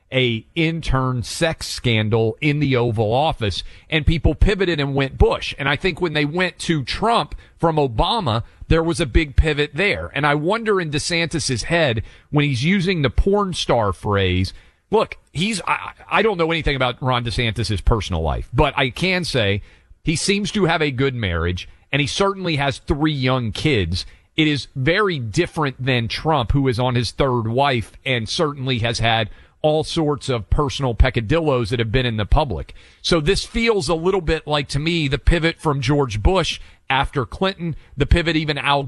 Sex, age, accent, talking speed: male, 40-59, American, 185 wpm